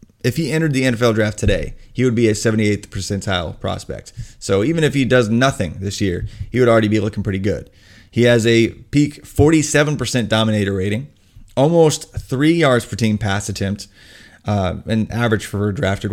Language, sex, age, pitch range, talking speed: English, male, 30-49, 100-125 Hz, 180 wpm